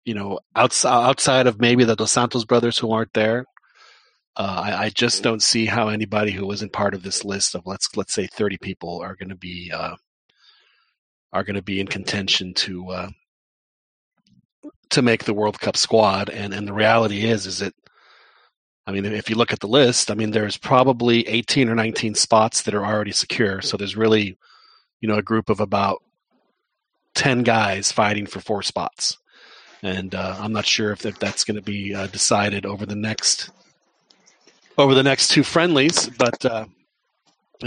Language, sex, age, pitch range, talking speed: English, male, 40-59, 100-120 Hz, 185 wpm